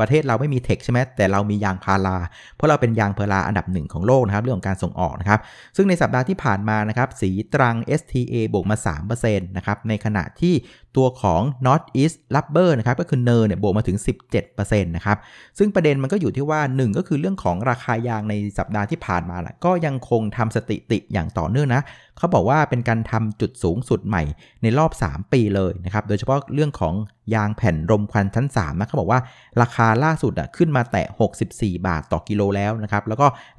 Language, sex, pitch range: Thai, male, 100-135 Hz